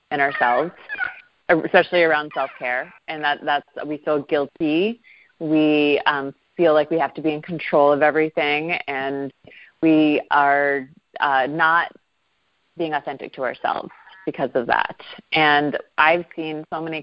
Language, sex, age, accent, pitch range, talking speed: English, female, 30-49, American, 135-160 Hz, 135 wpm